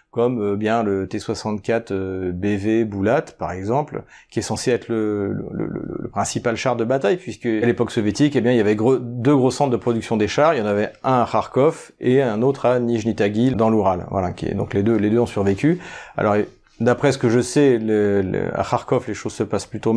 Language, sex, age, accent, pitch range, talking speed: French, male, 40-59, French, 110-135 Hz, 245 wpm